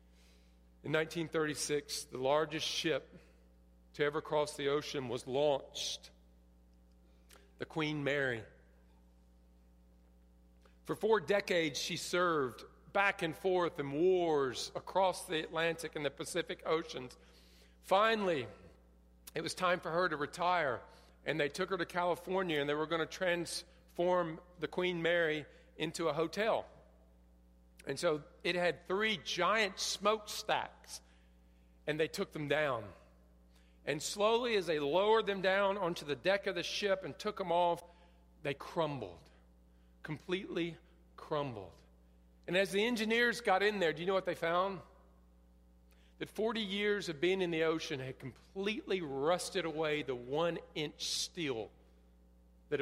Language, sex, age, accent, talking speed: English, male, 50-69, American, 135 wpm